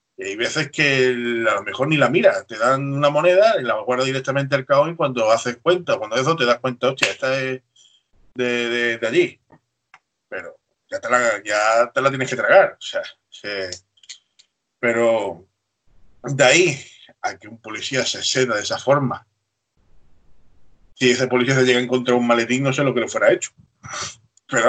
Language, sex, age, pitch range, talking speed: Spanish, male, 30-49, 120-150 Hz, 190 wpm